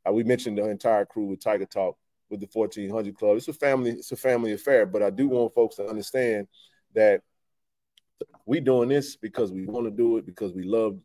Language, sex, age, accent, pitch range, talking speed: English, male, 30-49, American, 100-145 Hz, 210 wpm